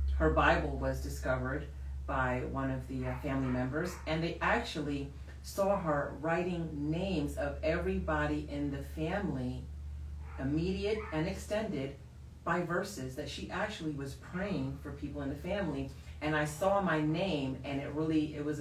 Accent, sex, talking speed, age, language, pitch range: American, female, 150 wpm, 40-59, English, 90-150 Hz